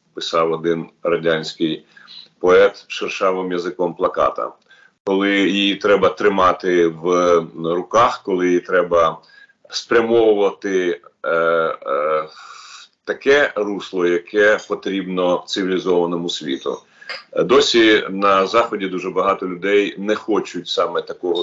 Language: Ukrainian